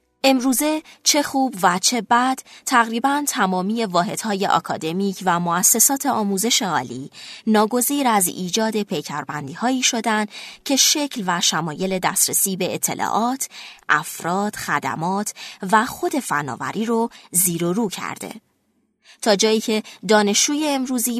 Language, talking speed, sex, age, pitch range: Persian, 115 wpm, female, 20-39, 175-245 Hz